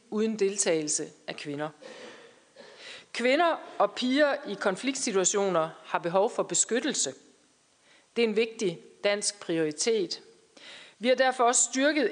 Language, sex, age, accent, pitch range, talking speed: Danish, female, 40-59, native, 175-230 Hz, 120 wpm